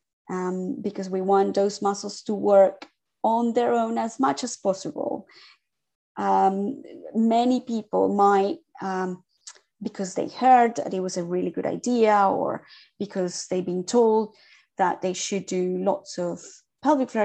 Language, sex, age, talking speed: English, female, 30-49, 150 wpm